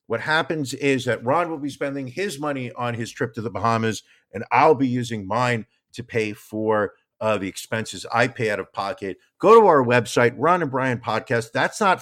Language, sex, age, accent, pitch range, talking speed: English, male, 50-69, American, 115-145 Hz, 210 wpm